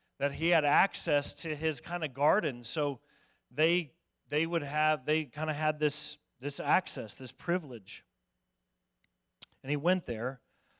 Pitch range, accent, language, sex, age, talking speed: 120-155 Hz, American, English, male, 40-59, 150 wpm